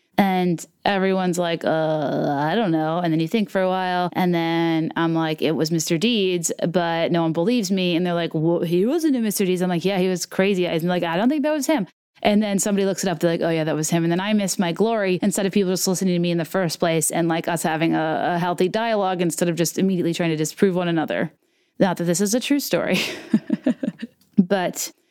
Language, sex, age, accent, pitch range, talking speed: English, female, 20-39, American, 170-215 Hz, 250 wpm